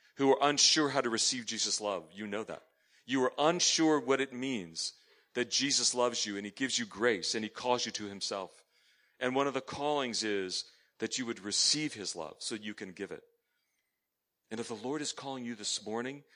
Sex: male